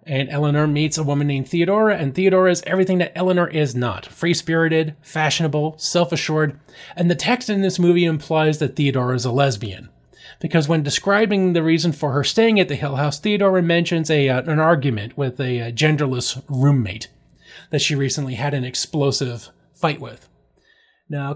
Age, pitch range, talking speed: 30-49, 135-170 Hz, 170 wpm